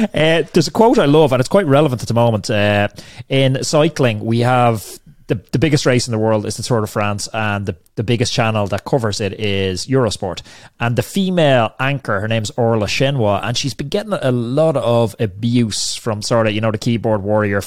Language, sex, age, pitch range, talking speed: English, male, 30-49, 110-130 Hz, 215 wpm